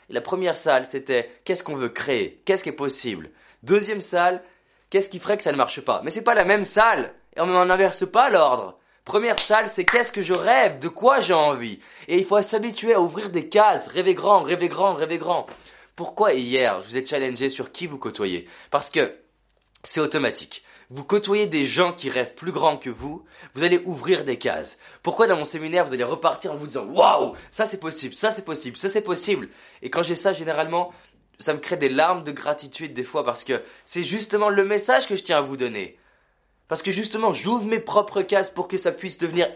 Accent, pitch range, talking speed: French, 155-205 Hz, 240 wpm